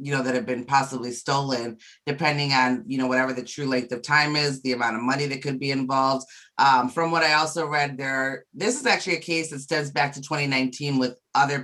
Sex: female